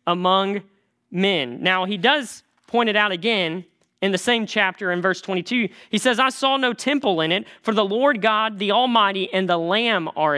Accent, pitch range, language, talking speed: American, 175-220 Hz, English, 195 wpm